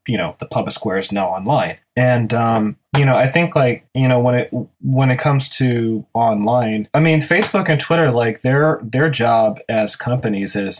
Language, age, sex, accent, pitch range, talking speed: English, 20-39, male, American, 110-140 Hz, 200 wpm